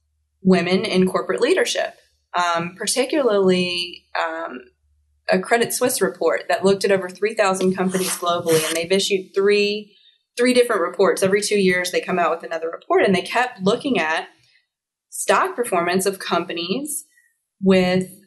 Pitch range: 170-195 Hz